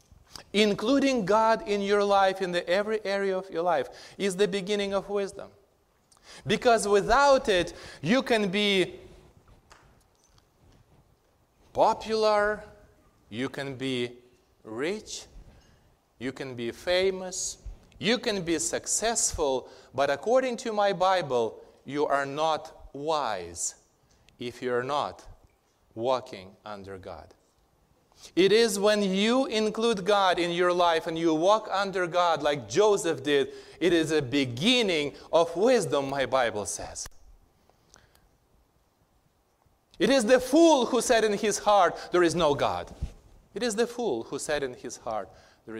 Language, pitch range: English, 125-205 Hz